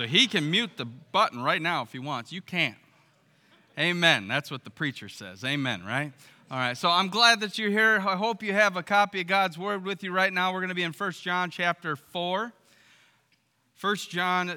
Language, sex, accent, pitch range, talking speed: English, male, American, 140-190 Hz, 220 wpm